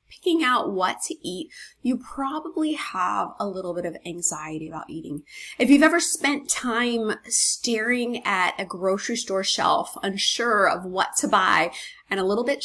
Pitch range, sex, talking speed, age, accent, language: 195-265 Hz, female, 165 wpm, 20-39, American, English